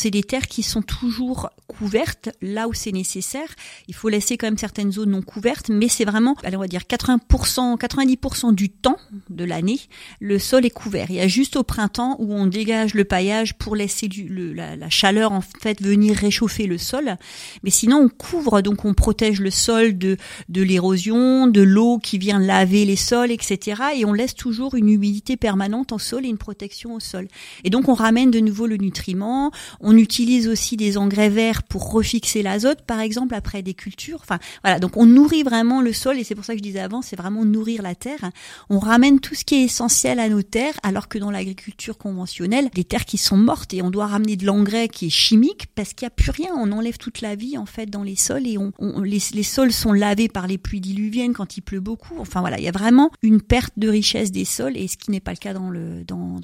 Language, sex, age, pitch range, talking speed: French, female, 40-59, 195-240 Hz, 235 wpm